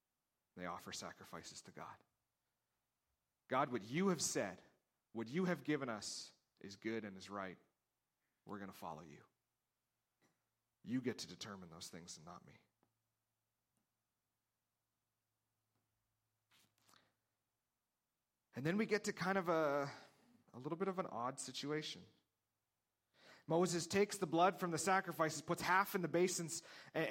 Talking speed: 135 wpm